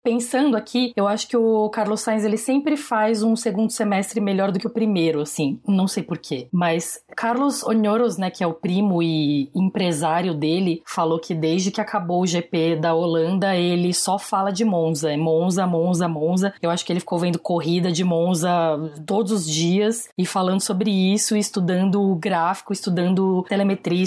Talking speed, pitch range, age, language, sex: 180 wpm, 170-205 Hz, 20-39, Portuguese, female